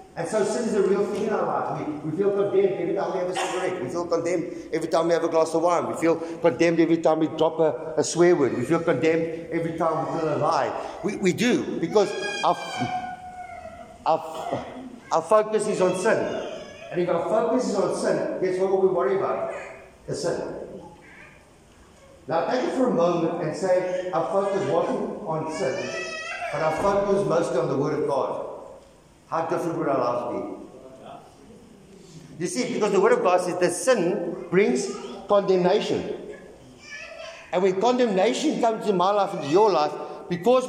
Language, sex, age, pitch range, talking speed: English, male, 50-69, 170-215 Hz, 190 wpm